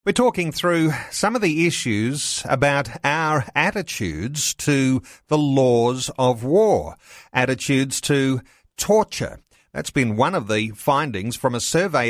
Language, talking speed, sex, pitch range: English, 135 wpm, male, 115-145 Hz